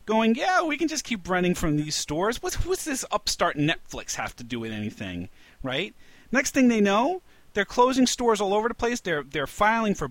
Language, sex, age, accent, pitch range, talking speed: English, male, 30-49, American, 130-220 Hz, 215 wpm